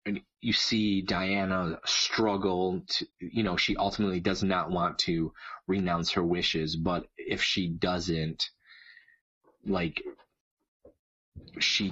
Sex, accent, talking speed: male, American, 115 wpm